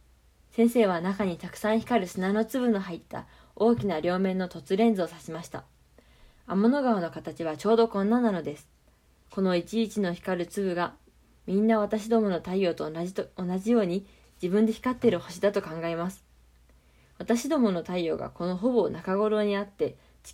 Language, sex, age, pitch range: Japanese, female, 20-39, 175-225 Hz